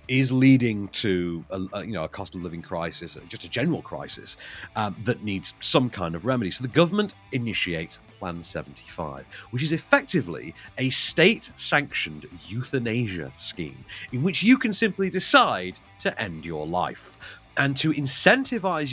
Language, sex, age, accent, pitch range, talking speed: English, male, 40-59, British, 95-145 Hz, 150 wpm